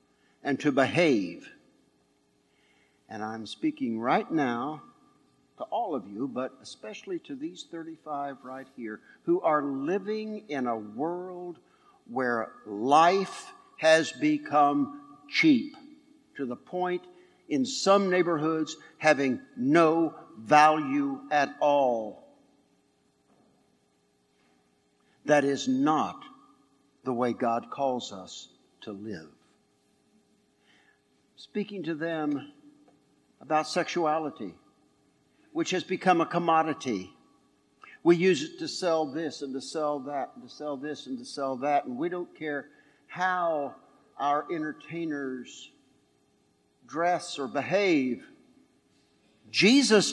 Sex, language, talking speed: male, English, 110 wpm